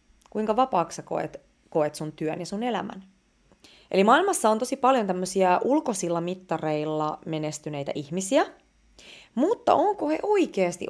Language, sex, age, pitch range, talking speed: Finnish, female, 20-39, 155-225 Hz, 125 wpm